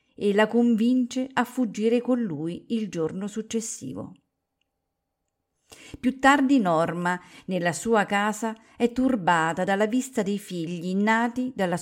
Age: 50-69